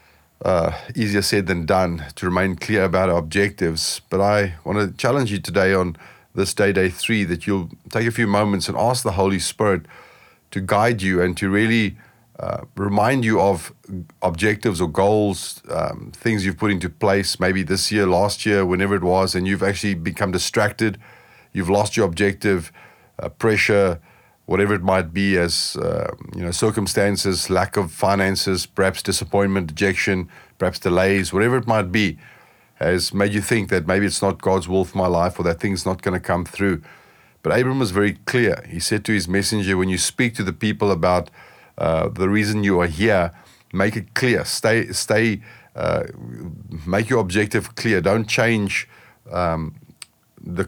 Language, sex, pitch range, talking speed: English, male, 90-105 Hz, 180 wpm